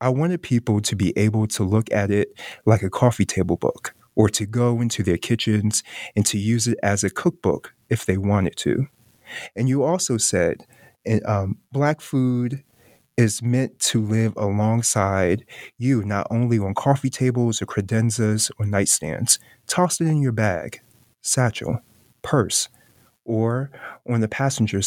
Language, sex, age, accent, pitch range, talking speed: English, male, 30-49, American, 105-120 Hz, 155 wpm